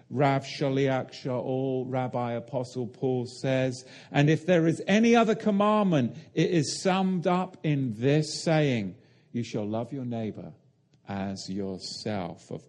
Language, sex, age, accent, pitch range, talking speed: English, male, 50-69, British, 110-150 Hz, 135 wpm